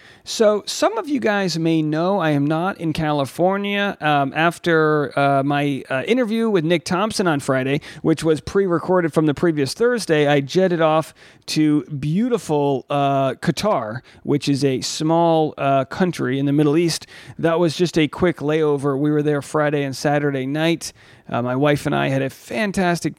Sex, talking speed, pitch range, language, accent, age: male, 175 wpm, 140-185 Hz, English, American, 40-59